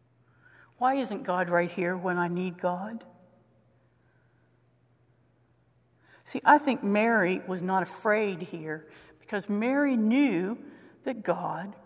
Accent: American